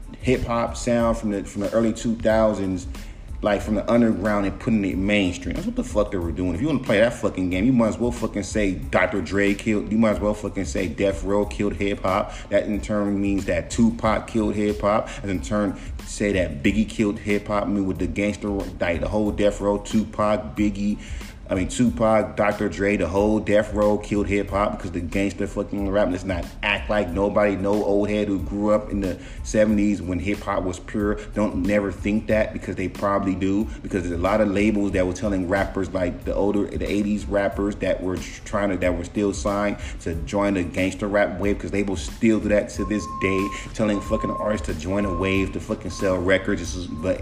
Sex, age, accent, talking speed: male, 30-49, American, 230 wpm